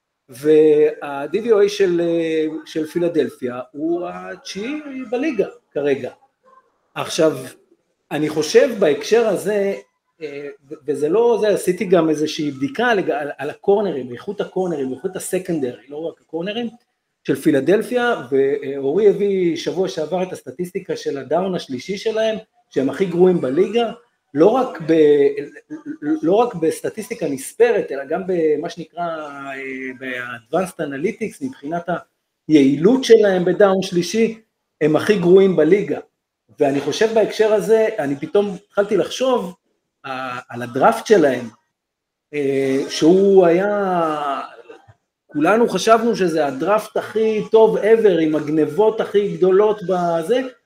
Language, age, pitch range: Hebrew, 50-69, 155-225 Hz